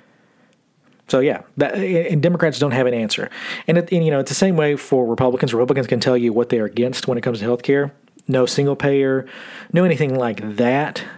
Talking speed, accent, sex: 205 wpm, American, male